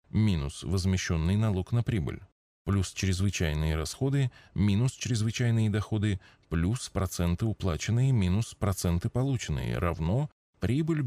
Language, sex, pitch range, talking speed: Russian, male, 90-125 Hz, 105 wpm